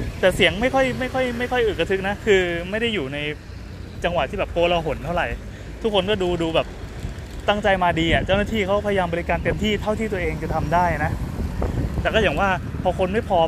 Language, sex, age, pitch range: Thai, male, 20-39, 150-210 Hz